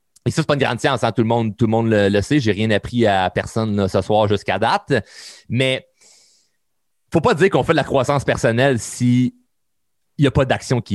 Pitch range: 115-160 Hz